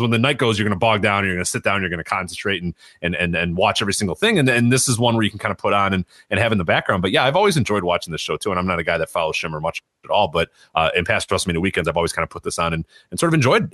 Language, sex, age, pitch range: English, male, 30-49, 90-120 Hz